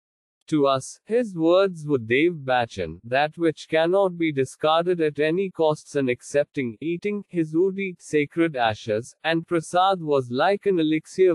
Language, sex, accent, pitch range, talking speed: English, male, Indian, 135-175 Hz, 150 wpm